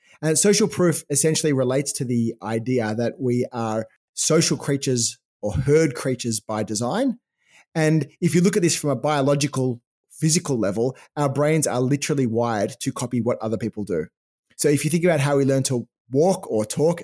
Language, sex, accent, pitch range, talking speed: English, male, Australian, 125-160 Hz, 185 wpm